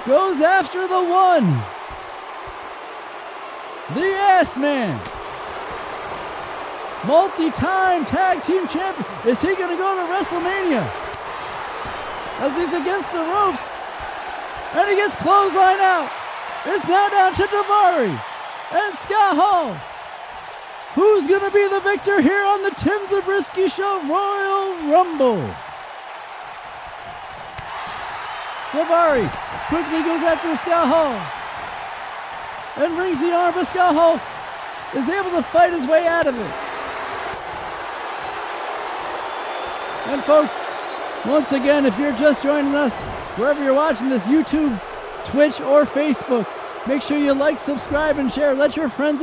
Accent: American